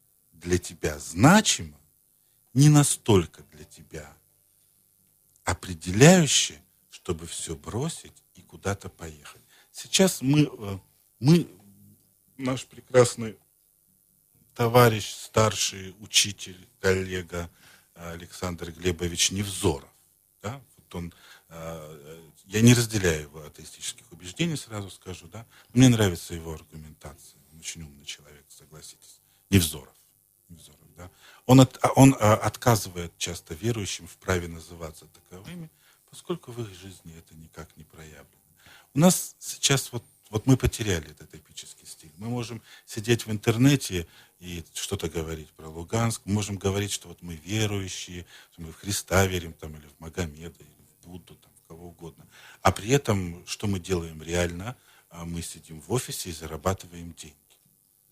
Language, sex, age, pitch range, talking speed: Russian, male, 50-69, 85-110 Hz, 120 wpm